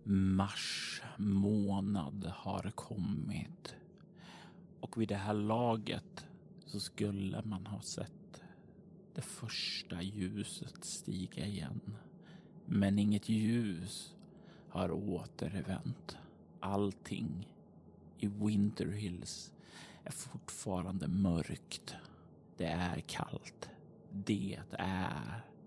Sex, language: male, Swedish